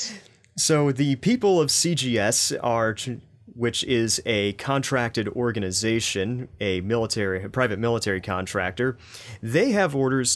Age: 30-49